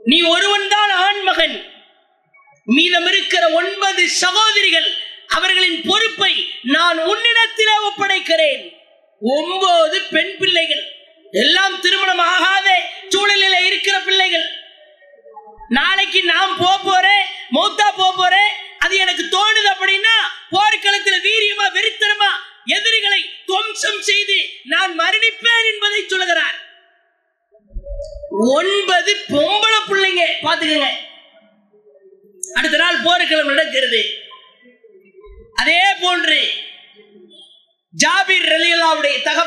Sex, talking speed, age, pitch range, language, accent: female, 85 wpm, 20-39, 320-395 Hz, English, Indian